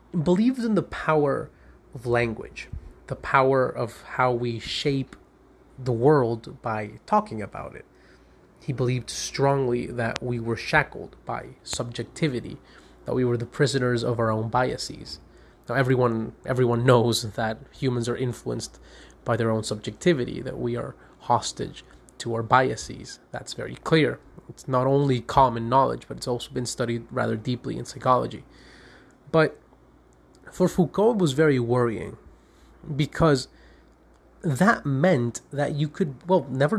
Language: English